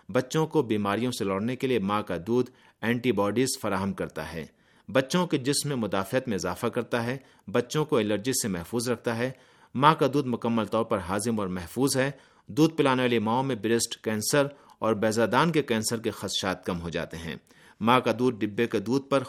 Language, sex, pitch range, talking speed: Urdu, male, 105-135 Hz, 200 wpm